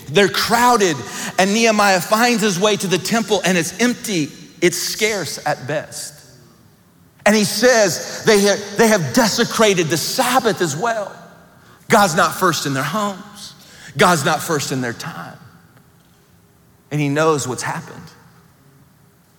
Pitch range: 130-180 Hz